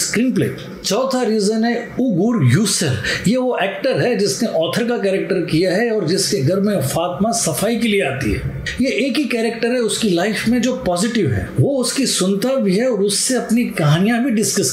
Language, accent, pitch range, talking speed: Hindi, native, 195-235 Hz, 205 wpm